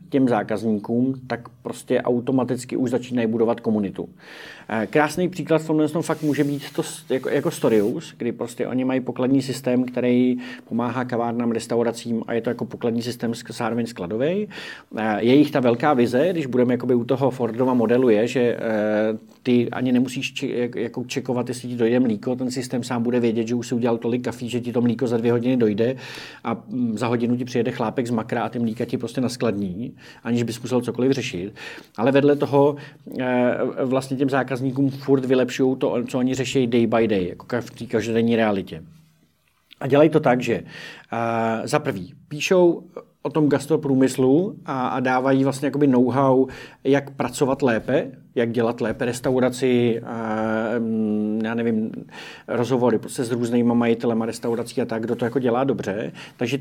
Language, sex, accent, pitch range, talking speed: Czech, male, native, 115-135 Hz, 165 wpm